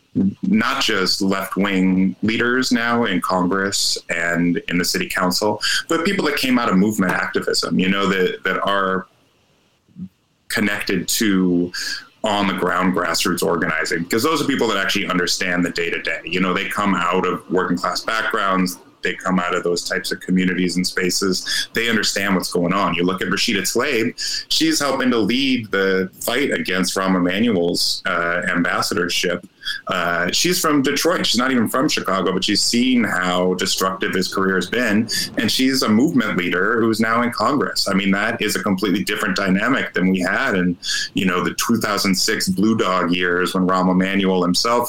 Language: English